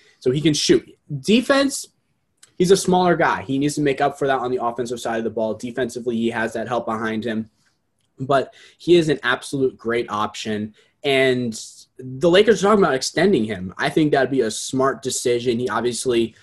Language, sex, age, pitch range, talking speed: English, male, 20-39, 110-145 Hz, 200 wpm